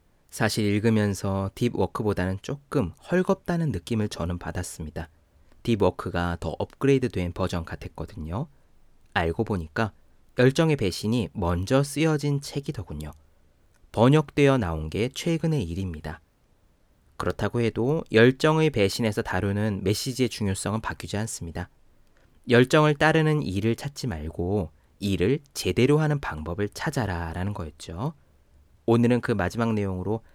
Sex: male